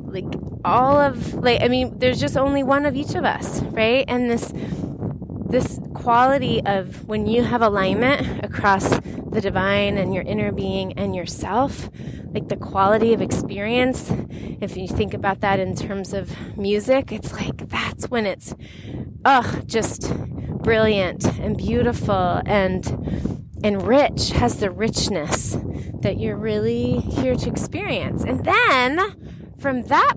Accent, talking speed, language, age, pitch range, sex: American, 145 wpm, English, 30-49, 200-270 Hz, female